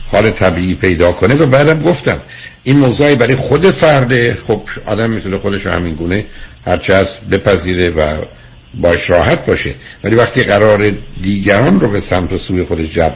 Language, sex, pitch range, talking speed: Persian, male, 90-130 Hz, 160 wpm